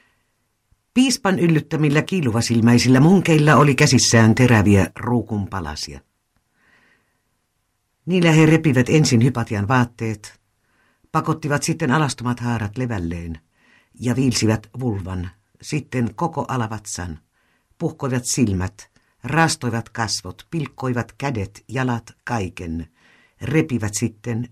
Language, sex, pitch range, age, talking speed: Finnish, female, 105-135 Hz, 60-79, 85 wpm